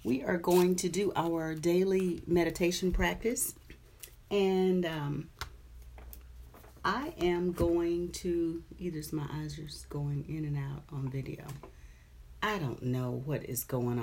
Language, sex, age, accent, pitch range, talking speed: English, female, 40-59, American, 145-195 Hz, 135 wpm